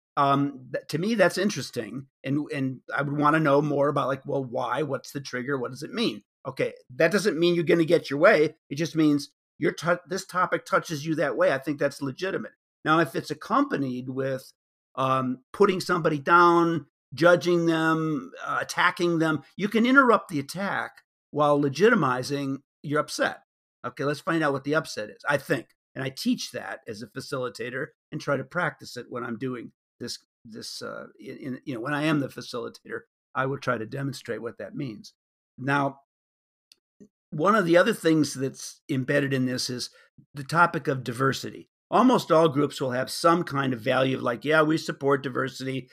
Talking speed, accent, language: 190 wpm, American, English